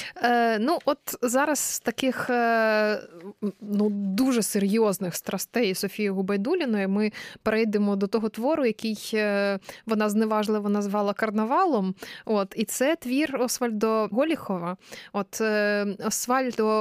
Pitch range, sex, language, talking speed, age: 200-245 Hz, female, Ukrainian, 95 wpm, 20-39